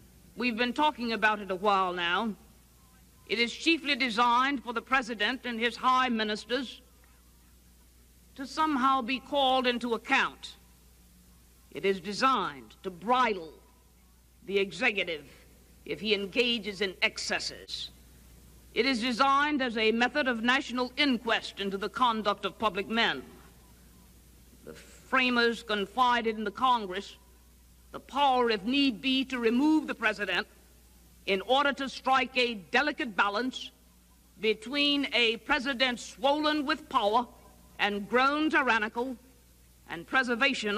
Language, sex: English, female